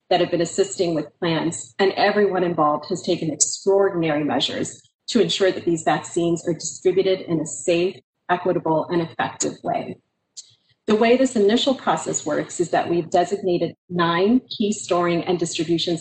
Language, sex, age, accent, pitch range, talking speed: English, female, 30-49, American, 170-205 Hz, 155 wpm